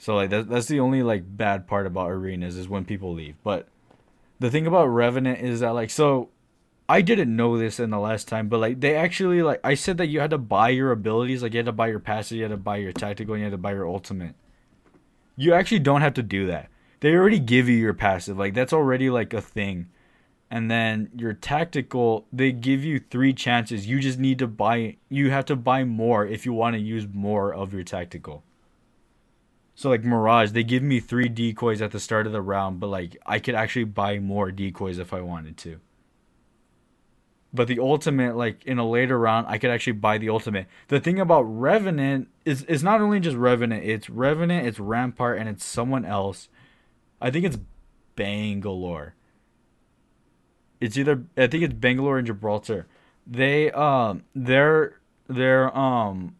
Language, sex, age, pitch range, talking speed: English, male, 20-39, 105-130 Hz, 200 wpm